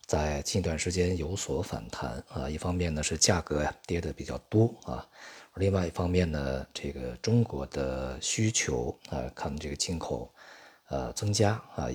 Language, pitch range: Chinese, 70-100 Hz